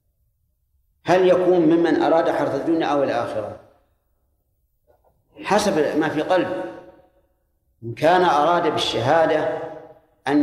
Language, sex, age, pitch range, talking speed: Arabic, male, 50-69, 130-180 Hz, 100 wpm